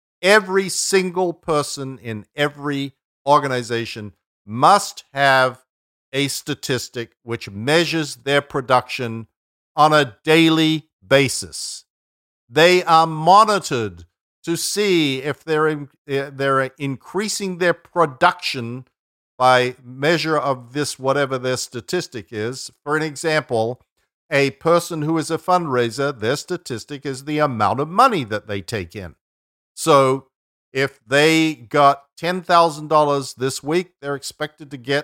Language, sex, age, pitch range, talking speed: English, male, 50-69, 125-160 Hz, 115 wpm